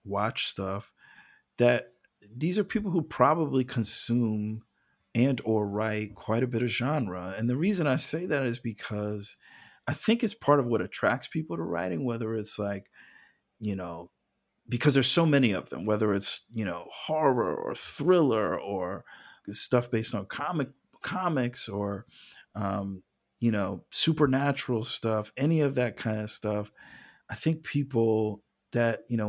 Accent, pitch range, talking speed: American, 105-130 Hz, 160 wpm